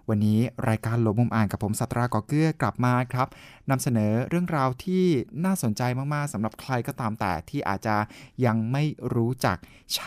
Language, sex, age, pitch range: Thai, male, 20-39, 105-130 Hz